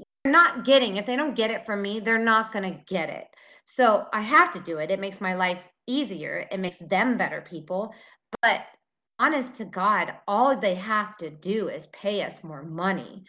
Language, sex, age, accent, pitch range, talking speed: English, female, 30-49, American, 170-205 Hz, 205 wpm